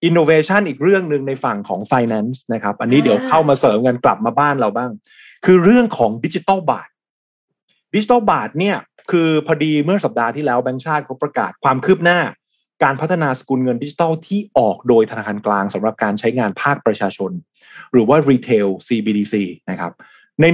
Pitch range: 110-150 Hz